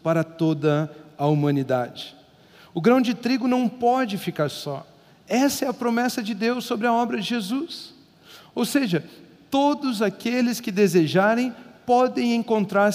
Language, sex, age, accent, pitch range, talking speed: Portuguese, male, 50-69, Brazilian, 195-255 Hz, 145 wpm